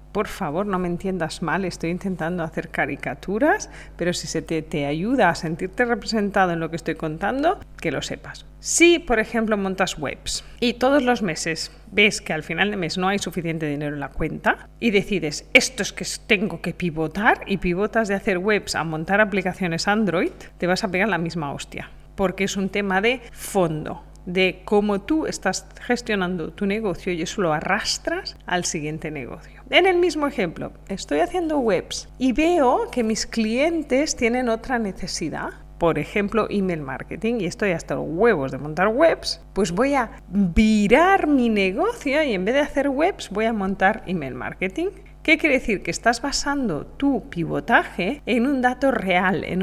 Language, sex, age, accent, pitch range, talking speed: Spanish, female, 40-59, Spanish, 175-235 Hz, 180 wpm